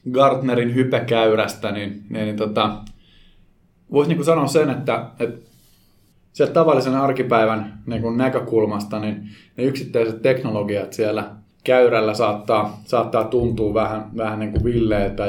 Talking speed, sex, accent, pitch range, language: 125 wpm, male, native, 105-125 Hz, Finnish